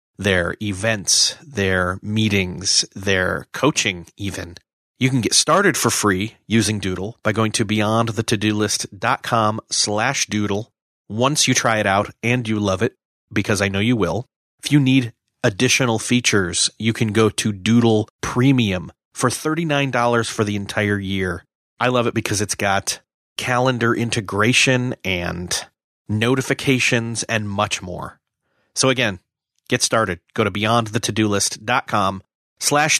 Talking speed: 140 wpm